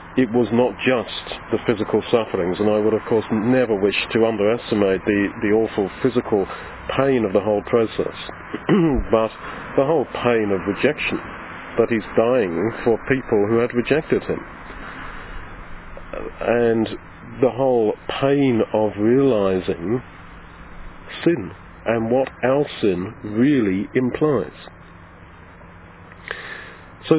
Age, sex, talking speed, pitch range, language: 40-59, male, 120 wpm, 100-120 Hz, English